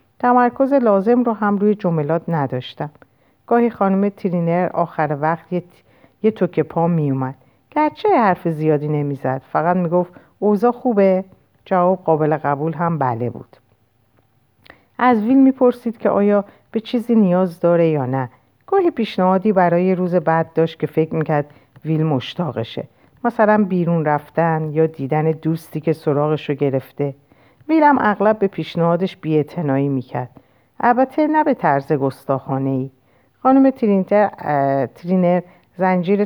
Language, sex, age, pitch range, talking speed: Persian, female, 50-69, 140-195 Hz, 135 wpm